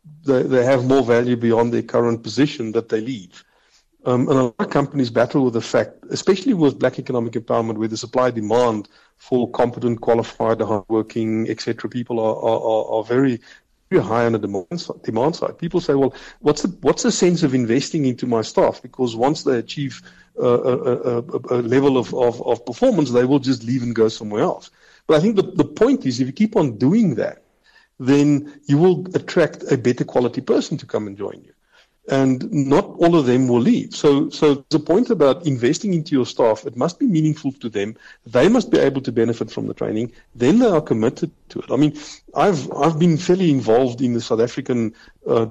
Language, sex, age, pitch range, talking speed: English, male, 50-69, 115-150 Hz, 205 wpm